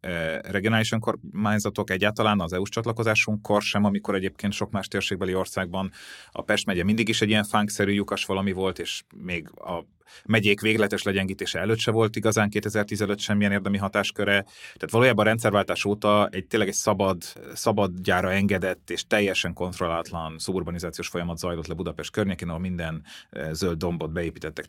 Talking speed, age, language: 155 wpm, 30-49, Hungarian